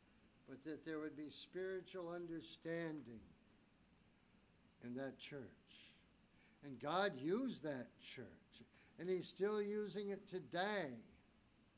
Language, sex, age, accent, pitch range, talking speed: English, male, 60-79, American, 160-200 Hz, 105 wpm